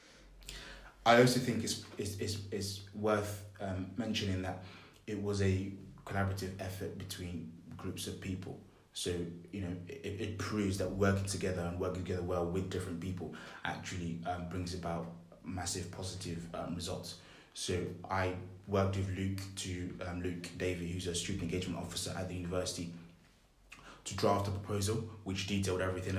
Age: 20-39